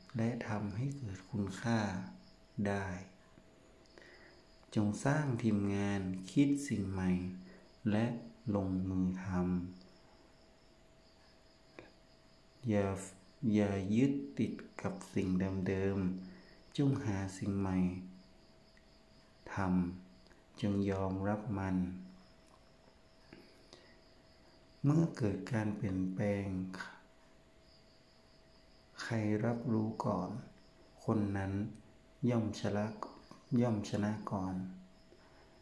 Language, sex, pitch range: Thai, male, 95-115 Hz